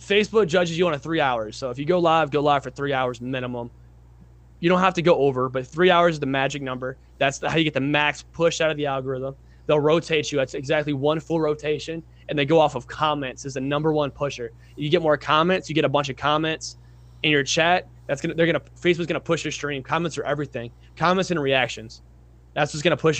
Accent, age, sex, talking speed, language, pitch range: American, 20-39, male, 240 wpm, English, 125-165 Hz